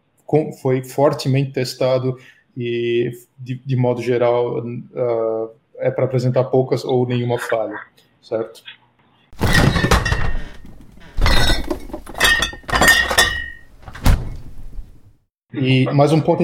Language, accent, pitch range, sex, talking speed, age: Portuguese, Brazilian, 125-155 Hz, male, 75 wpm, 20-39